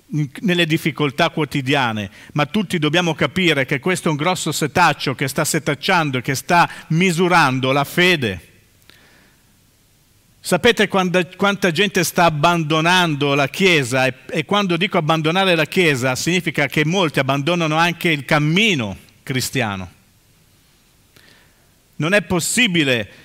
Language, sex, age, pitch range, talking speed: Italian, male, 50-69, 130-170 Hz, 120 wpm